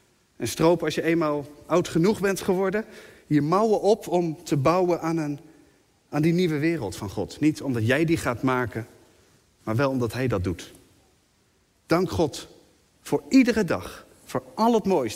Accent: Dutch